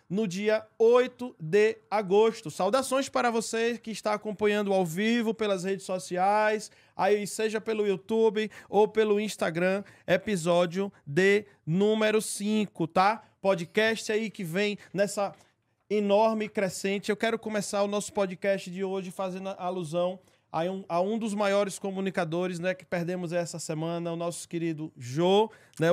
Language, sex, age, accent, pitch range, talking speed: Portuguese, male, 20-39, Brazilian, 175-210 Hz, 145 wpm